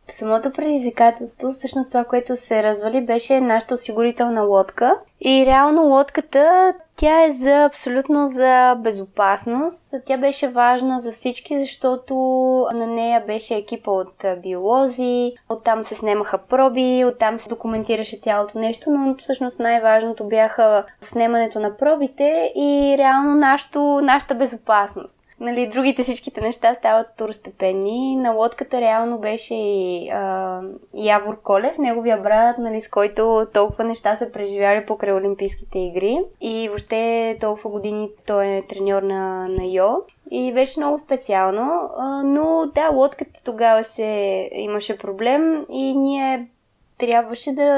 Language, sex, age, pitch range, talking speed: Bulgarian, female, 20-39, 215-270 Hz, 130 wpm